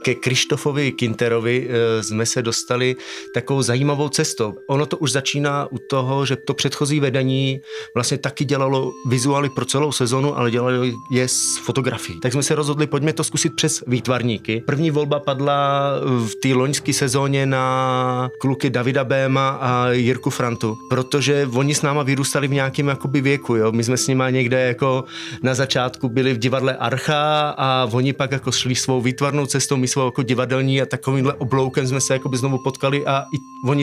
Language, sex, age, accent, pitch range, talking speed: Czech, male, 30-49, native, 125-140 Hz, 170 wpm